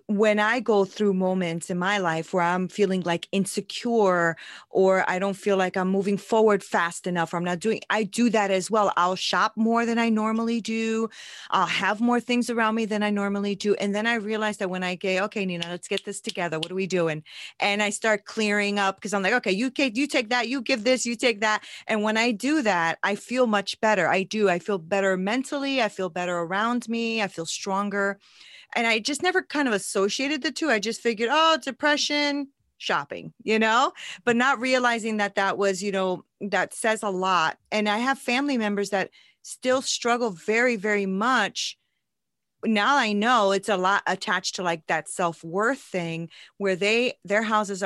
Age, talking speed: 30-49, 210 wpm